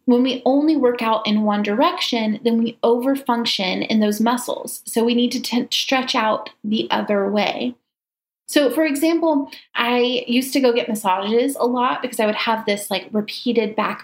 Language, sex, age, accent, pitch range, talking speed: English, female, 30-49, American, 220-275 Hz, 185 wpm